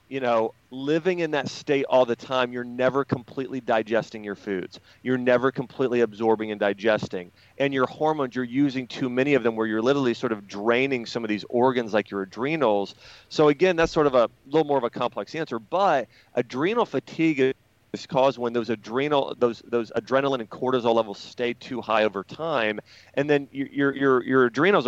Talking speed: 195 wpm